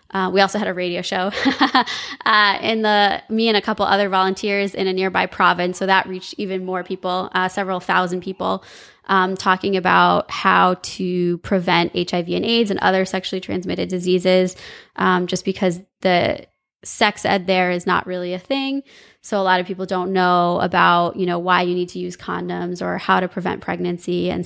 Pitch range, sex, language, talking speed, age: 180-200 Hz, female, English, 190 wpm, 20-39